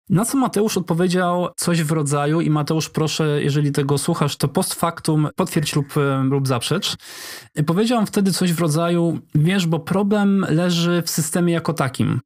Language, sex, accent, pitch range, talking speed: Polish, male, native, 140-170 Hz, 160 wpm